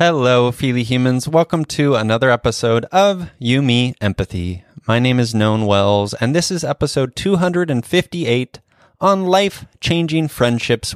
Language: English